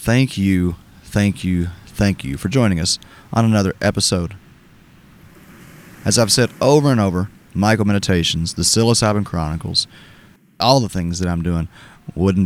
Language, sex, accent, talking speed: English, male, American, 145 wpm